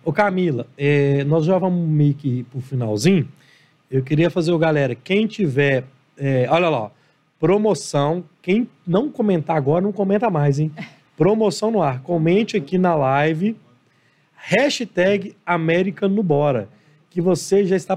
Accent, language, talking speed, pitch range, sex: Brazilian, Portuguese, 145 wpm, 150-200 Hz, male